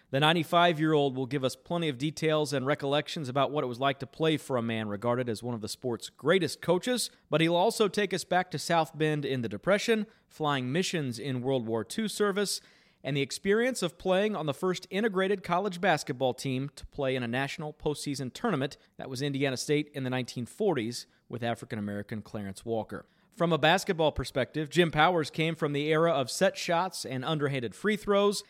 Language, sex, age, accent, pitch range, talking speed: English, male, 40-59, American, 130-185 Hz, 200 wpm